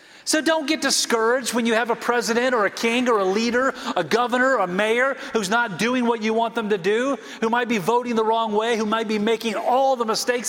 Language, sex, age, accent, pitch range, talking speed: English, male, 40-59, American, 180-245 Hz, 240 wpm